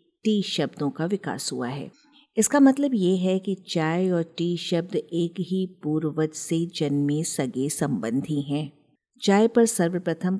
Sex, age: female, 50-69